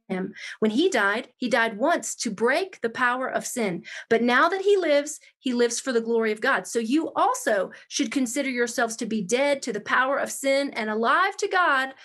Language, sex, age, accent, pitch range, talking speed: English, female, 40-59, American, 230-310 Hz, 215 wpm